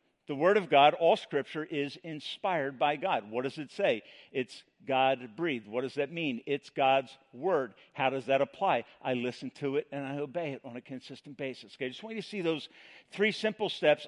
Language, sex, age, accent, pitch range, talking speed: English, male, 50-69, American, 150-220 Hz, 215 wpm